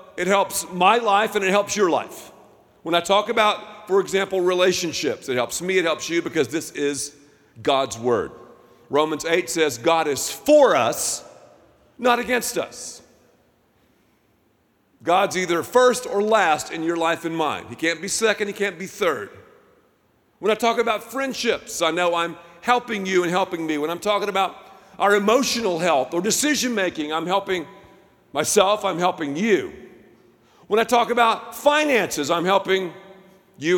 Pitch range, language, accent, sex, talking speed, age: 175-225 Hz, English, American, male, 160 wpm, 50-69